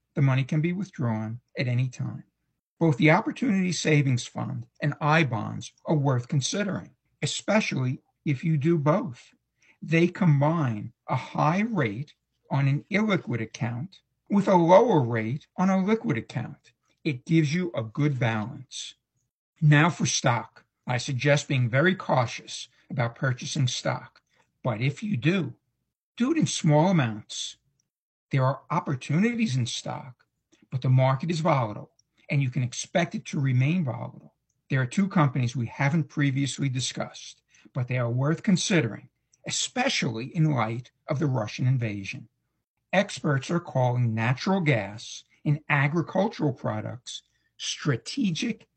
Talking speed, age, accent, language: 140 wpm, 60-79, American, English